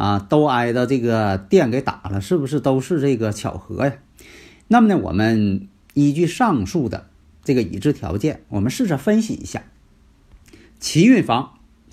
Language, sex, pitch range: Chinese, male, 100-145 Hz